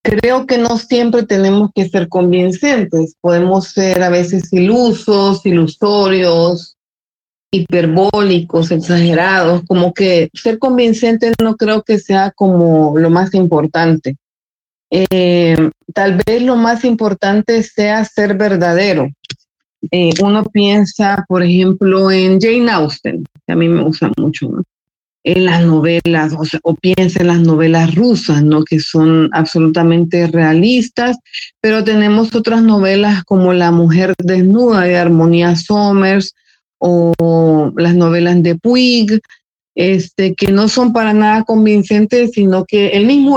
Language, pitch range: Spanish, 170-210 Hz